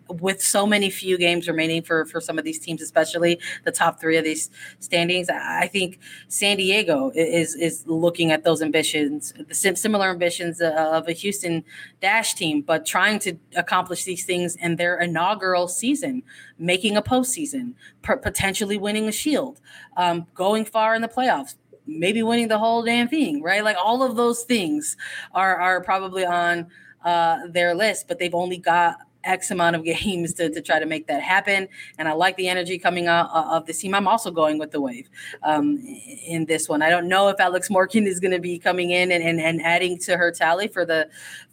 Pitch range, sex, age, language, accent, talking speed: 165-200 Hz, female, 20-39, English, American, 195 wpm